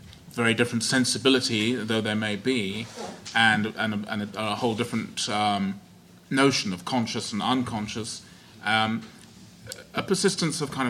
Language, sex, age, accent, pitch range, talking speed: English, male, 30-49, British, 105-130 Hz, 145 wpm